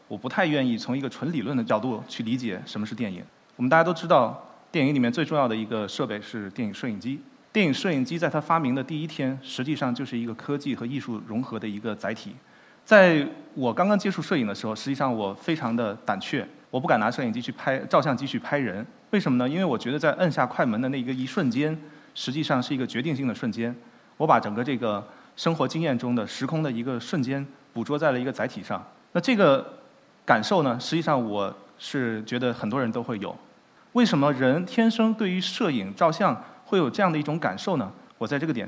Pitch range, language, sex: 120-165 Hz, Chinese, male